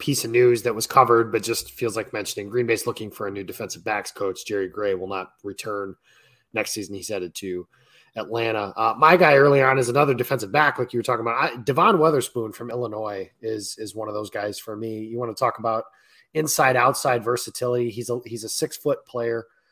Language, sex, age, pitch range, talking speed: English, male, 20-39, 110-135 Hz, 220 wpm